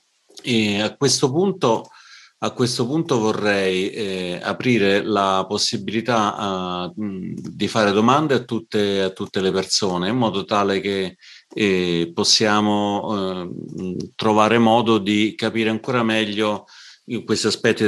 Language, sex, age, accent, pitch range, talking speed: Italian, male, 40-59, native, 100-125 Hz, 125 wpm